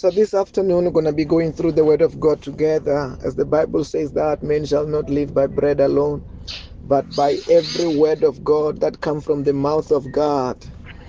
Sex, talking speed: male, 210 wpm